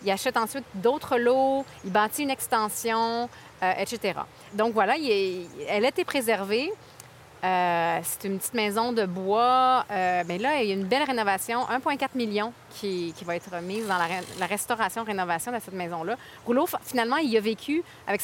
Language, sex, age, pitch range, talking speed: French, female, 30-49, 195-245 Hz, 190 wpm